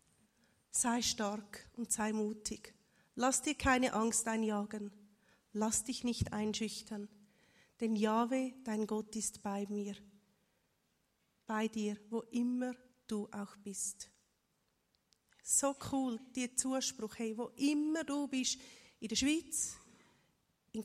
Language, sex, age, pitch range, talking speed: German, female, 30-49, 215-255 Hz, 120 wpm